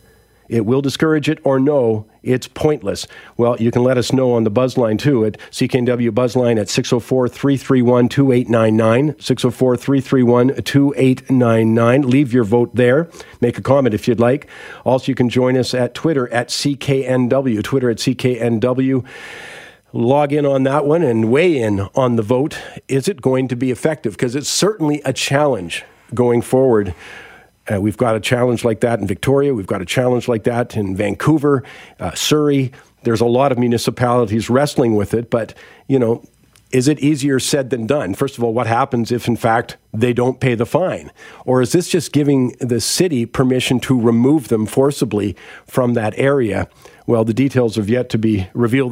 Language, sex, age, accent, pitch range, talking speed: English, male, 50-69, American, 115-135 Hz, 175 wpm